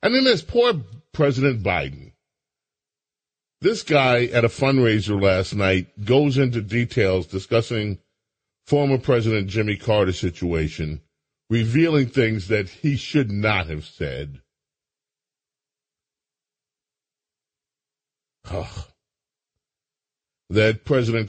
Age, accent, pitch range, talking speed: 40-59, American, 90-135 Hz, 95 wpm